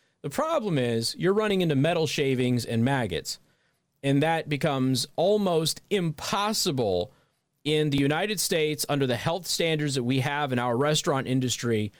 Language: English